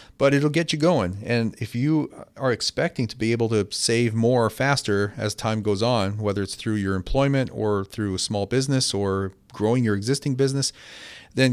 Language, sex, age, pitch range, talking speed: English, male, 40-59, 105-125 Hz, 195 wpm